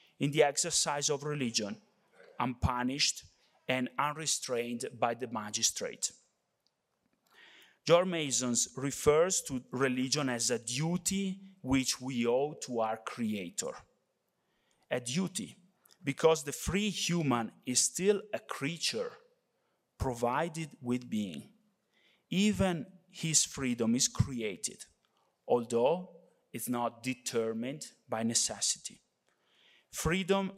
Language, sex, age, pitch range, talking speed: English, male, 30-49, 125-170 Hz, 100 wpm